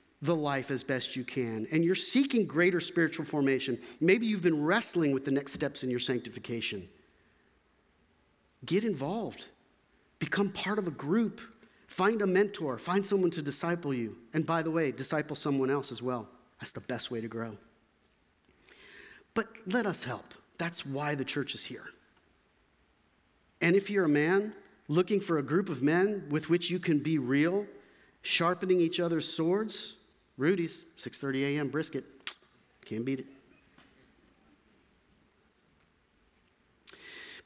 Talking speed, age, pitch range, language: 145 wpm, 50-69, 125-180 Hz, English